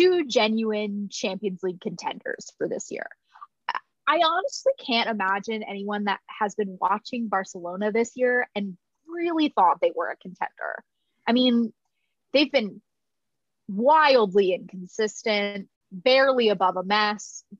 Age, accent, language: 20-39, American, English